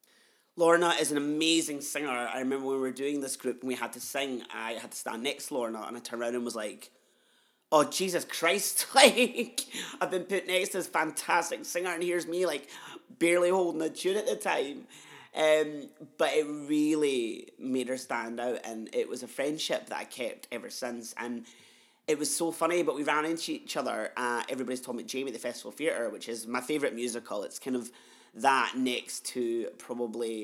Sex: male